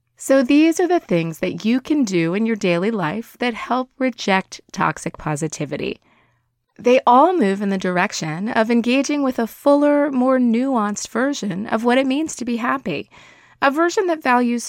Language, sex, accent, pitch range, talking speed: English, female, American, 175-260 Hz, 175 wpm